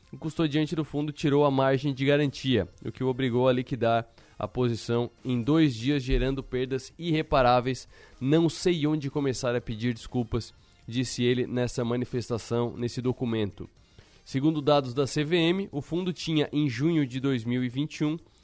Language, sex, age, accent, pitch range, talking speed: Portuguese, male, 20-39, Brazilian, 120-155 Hz, 155 wpm